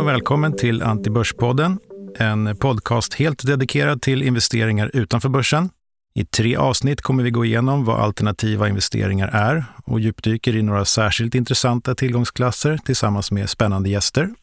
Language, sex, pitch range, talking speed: Swedish, male, 105-125 Hz, 135 wpm